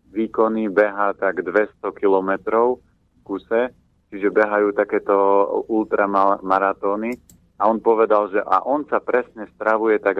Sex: male